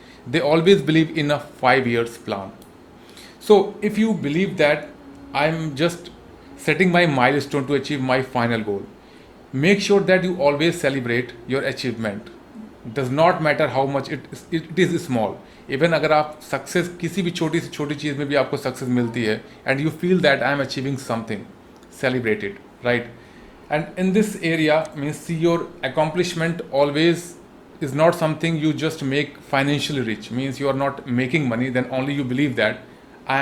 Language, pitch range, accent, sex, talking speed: Hindi, 125-165 Hz, native, male, 180 wpm